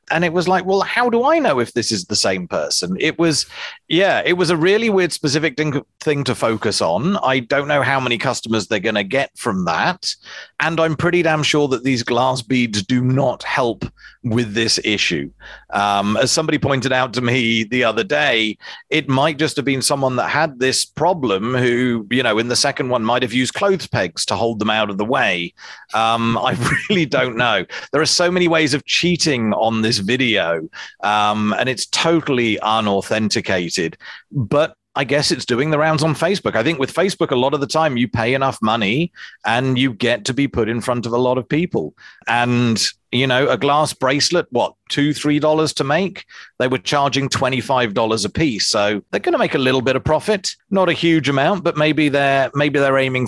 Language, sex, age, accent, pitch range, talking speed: English, male, 40-59, British, 115-155 Hz, 210 wpm